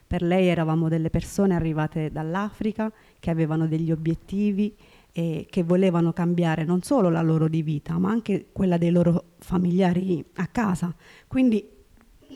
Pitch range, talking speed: 165-190 Hz, 145 wpm